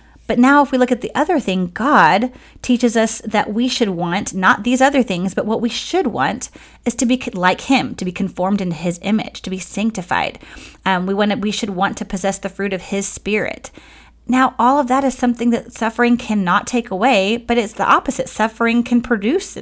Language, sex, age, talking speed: English, female, 30-49, 215 wpm